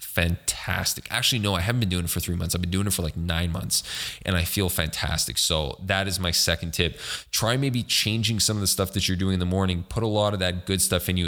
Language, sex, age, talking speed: English, male, 20-39, 270 wpm